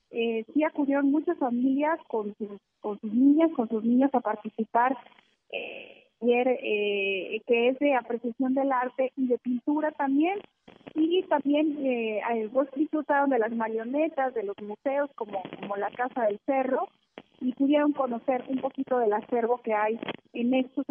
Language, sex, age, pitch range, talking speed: Spanish, female, 30-49, 230-285 Hz, 150 wpm